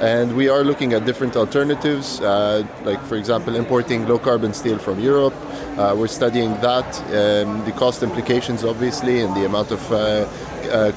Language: English